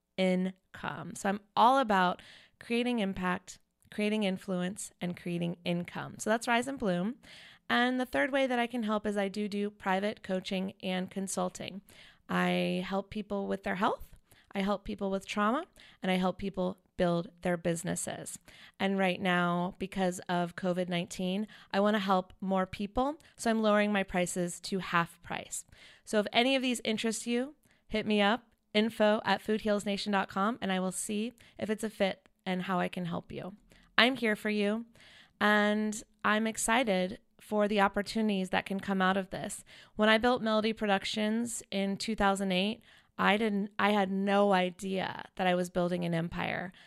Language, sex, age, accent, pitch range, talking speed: English, female, 20-39, American, 185-215 Hz, 170 wpm